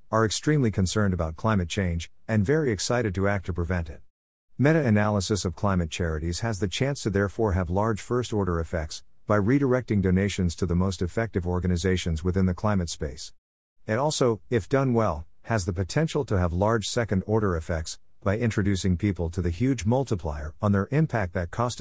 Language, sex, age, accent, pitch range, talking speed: English, male, 50-69, American, 90-115 Hz, 185 wpm